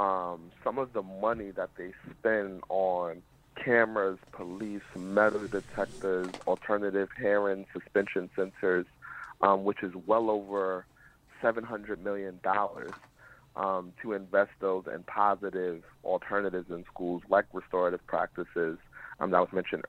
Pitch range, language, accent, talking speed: 90-105 Hz, English, American, 120 wpm